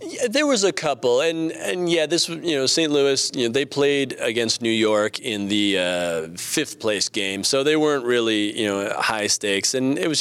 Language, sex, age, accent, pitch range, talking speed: English, male, 30-49, American, 105-135 Hz, 220 wpm